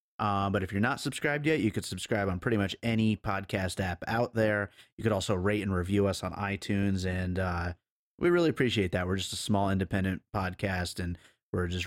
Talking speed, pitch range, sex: 210 wpm, 95-110 Hz, male